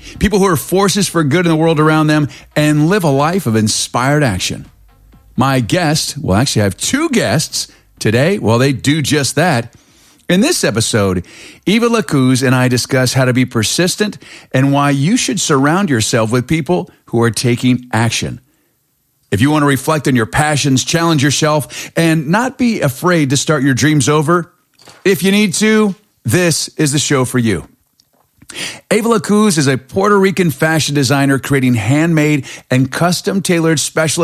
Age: 40-59